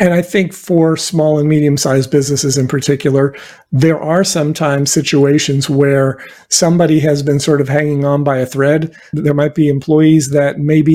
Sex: male